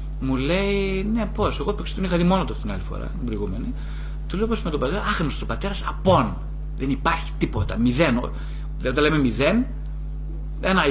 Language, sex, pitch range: Greek, male, 135-180 Hz